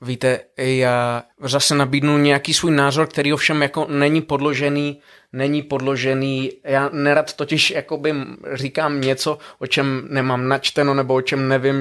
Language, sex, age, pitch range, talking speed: Czech, male, 20-39, 120-135 Hz, 140 wpm